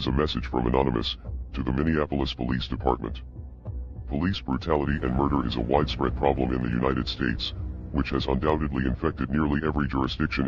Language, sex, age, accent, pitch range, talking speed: English, female, 50-69, American, 65-80 Hz, 160 wpm